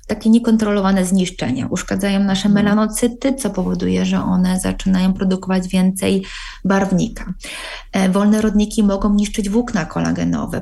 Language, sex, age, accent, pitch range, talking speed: Polish, female, 20-39, native, 175-205 Hz, 115 wpm